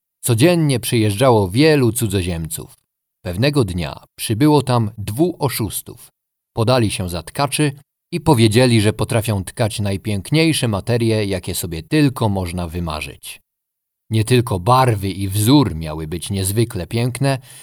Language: Polish